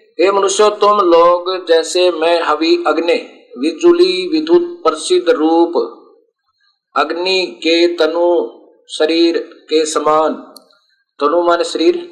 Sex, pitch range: male, 165-270 Hz